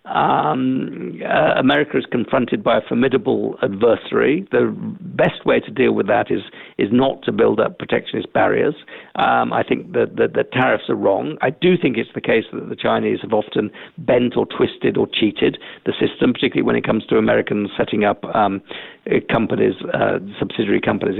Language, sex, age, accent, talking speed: English, male, 50-69, British, 180 wpm